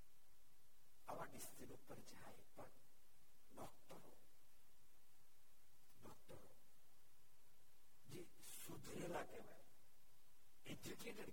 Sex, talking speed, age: male, 70 wpm, 60-79